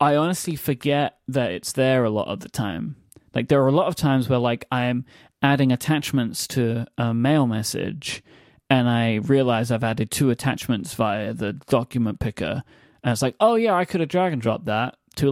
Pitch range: 125-160 Hz